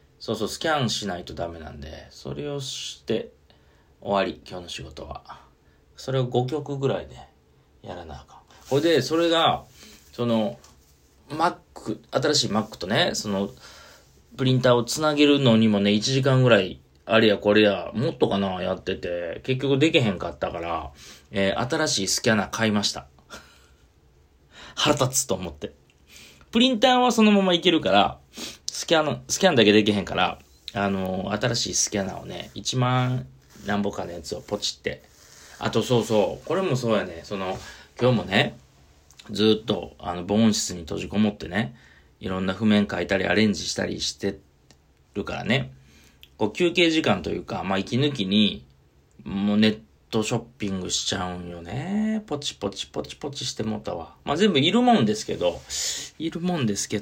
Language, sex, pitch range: Japanese, male, 85-130 Hz